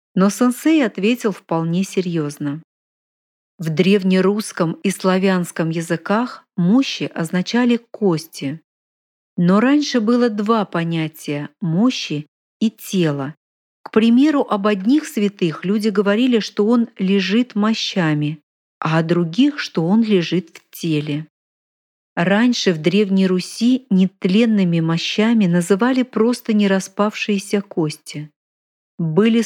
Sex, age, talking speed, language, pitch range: female, 40-59, 110 wpm, Russian, 170-225 Hz